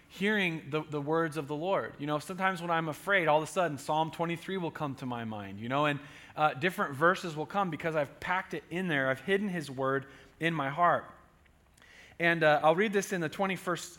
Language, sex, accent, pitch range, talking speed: English, male, American, 145-175 Hz, 225 wpm